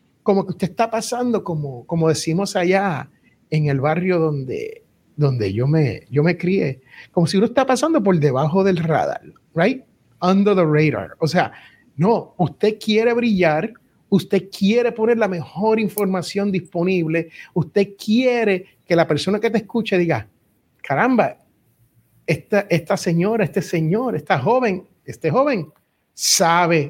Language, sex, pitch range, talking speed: Spanish, male, 160-220 Hz, 145 wpm